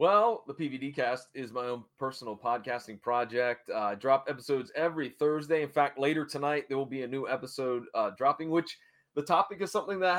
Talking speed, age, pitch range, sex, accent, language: 205 wpm, 30-49, 120-165 Hz, male, American, English